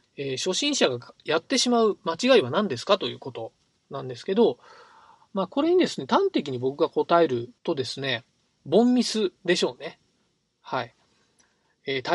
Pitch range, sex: 130-195 Hz, male